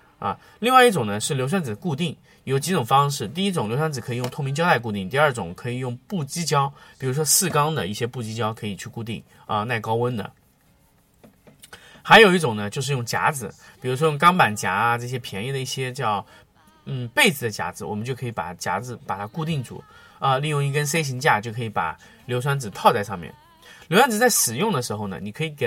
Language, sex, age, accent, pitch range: Chinese, male, 20-39, native, 115-160 Hz